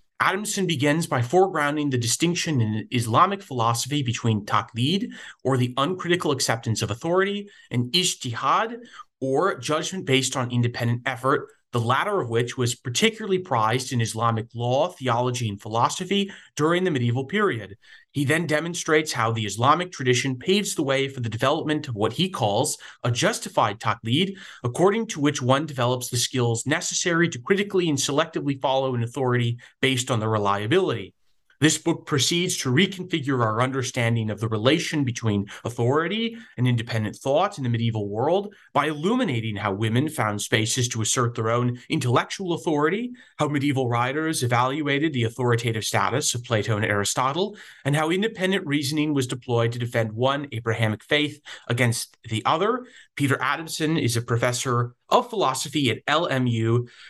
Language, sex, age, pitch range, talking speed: English, male, 30-49, 120-160 Hz, 155 wpm